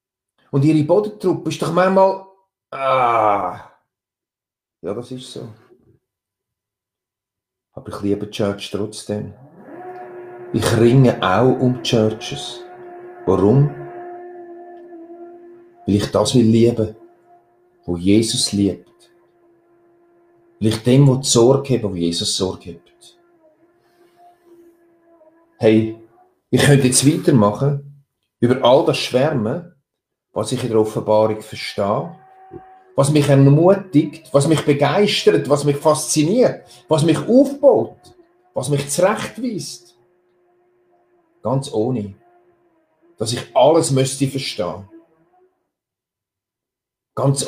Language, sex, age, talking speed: German, male, 40-59, 100 wpm